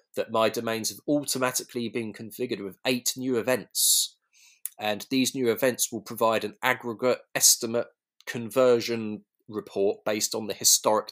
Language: English